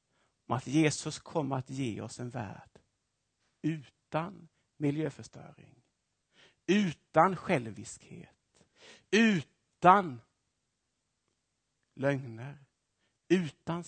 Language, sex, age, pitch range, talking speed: Swedish, male, 60-79, 120-165 Hz, 70 wpm